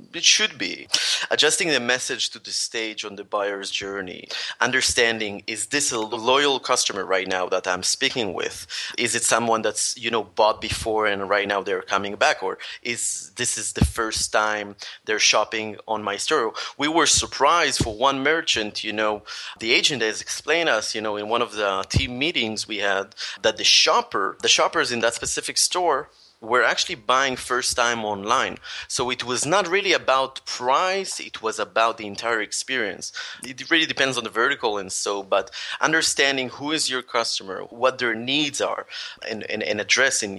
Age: 30-49